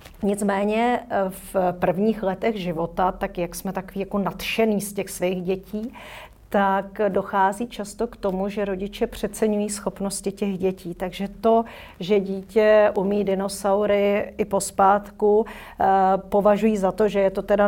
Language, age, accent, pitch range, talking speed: Czech, 50-69, native, 185-210 Hz, 140 wpm